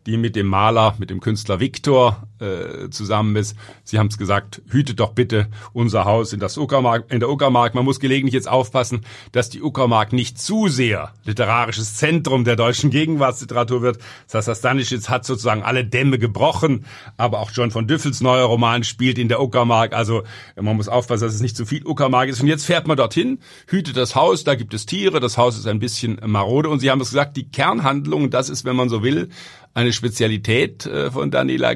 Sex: male